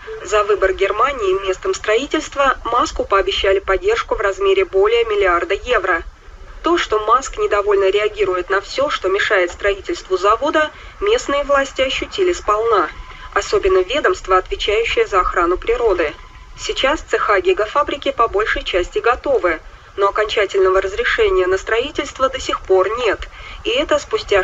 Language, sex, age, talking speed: Russian, female, 20-39, 130 wpm